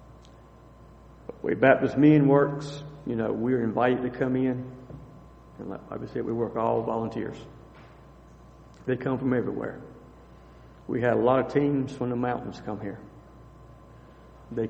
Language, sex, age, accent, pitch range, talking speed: English, male, 50-69, American, 115-135 Hz, 145 wpm